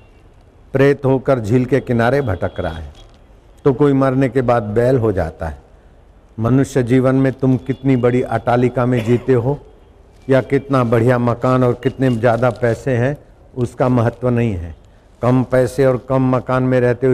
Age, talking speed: 60-79, 170 wpm